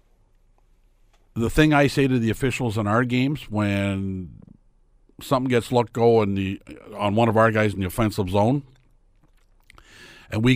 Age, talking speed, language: 50-69, 150 wpm, English